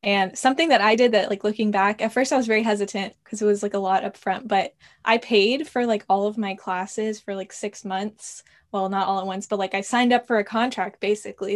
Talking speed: 260 wpm